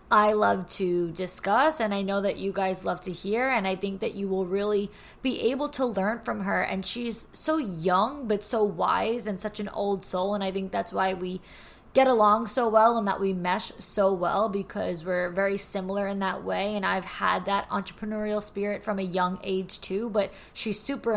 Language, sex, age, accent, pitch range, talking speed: English, female, 20-39, American, 190-225 Hz, 215 wpm